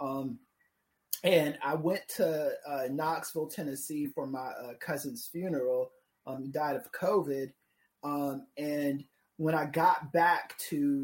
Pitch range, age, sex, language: 145-180 Hz, 30-49, male, English